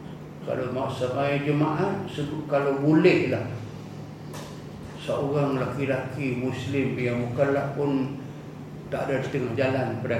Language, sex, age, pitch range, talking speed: Malayalam, male, 50-69, 120-150 Hz, 100 wpm